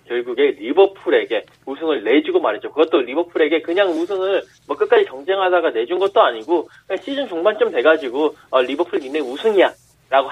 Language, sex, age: Korean, male, 20-39